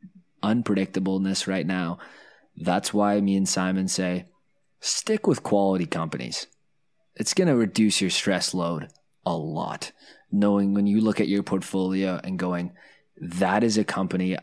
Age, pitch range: 20-39, 90-105 Hz